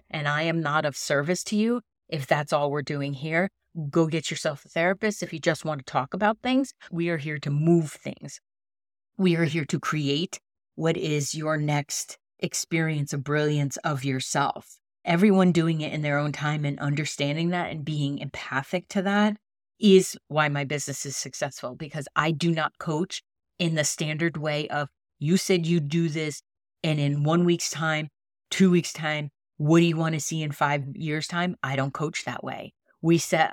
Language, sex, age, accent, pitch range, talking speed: English, female, 30-49, American, 150-185 Hz, 195 wpm